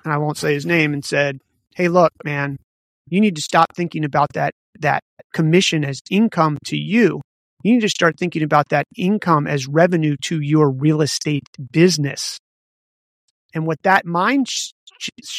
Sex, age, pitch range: male, 30-49, 150-175 Hz